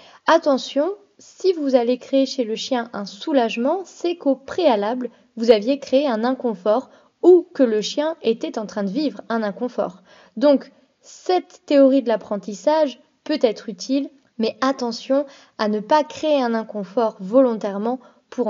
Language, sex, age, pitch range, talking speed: French, female, 20-39, 215-275 Hz, 150 wpm